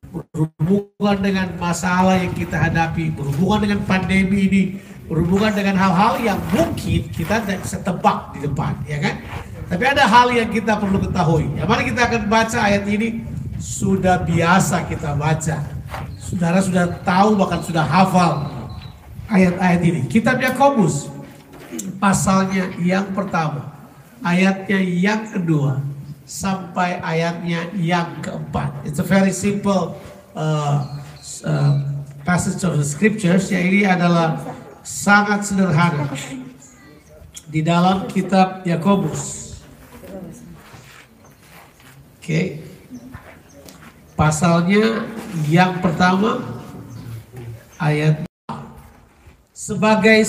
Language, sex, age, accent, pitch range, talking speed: Indonesian, male, 50-69, native, 155-200 Hz, 105 wpm